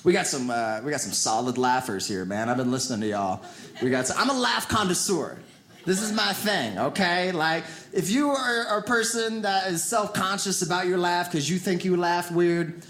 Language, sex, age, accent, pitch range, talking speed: English, male, 30-49, American, 180-235 Hz, 215 wpm